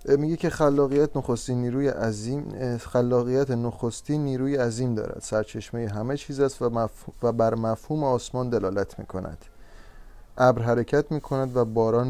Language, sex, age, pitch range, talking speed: Persian, male, 30-49, 110-135 Hz, 135 wpm